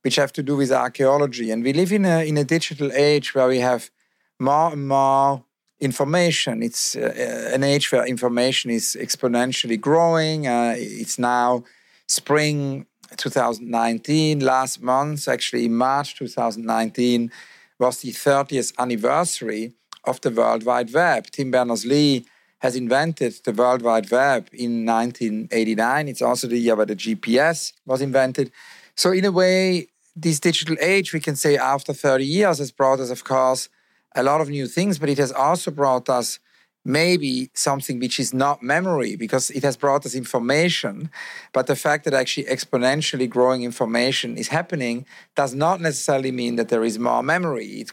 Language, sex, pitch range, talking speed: English, male, 125-145 Hz, 175 wpm